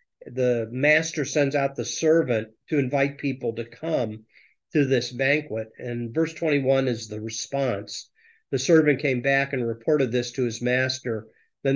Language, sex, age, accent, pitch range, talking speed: English, male, 50-69, American, 120-150 Hz, 160 wpm